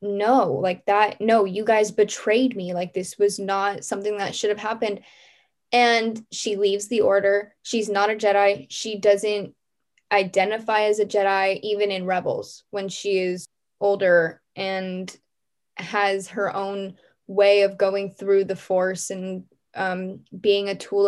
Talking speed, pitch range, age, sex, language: 155 wpm, 195-230 Hz, 10-29, female, English